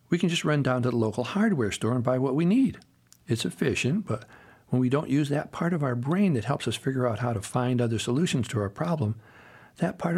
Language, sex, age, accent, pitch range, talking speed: English, male, 60-79, American, 115-150 Hz, 250 wpm